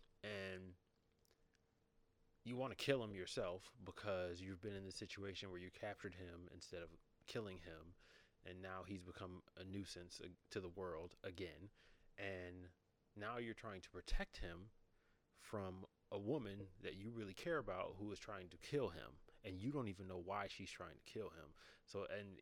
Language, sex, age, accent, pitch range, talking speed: English, male, 30-49, American, 90-100 Hz, 175 wpm